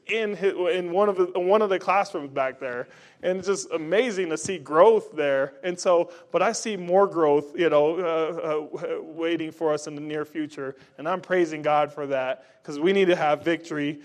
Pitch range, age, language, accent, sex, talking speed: 140-170 Hz, 20-39, English, American, male, 220 wpm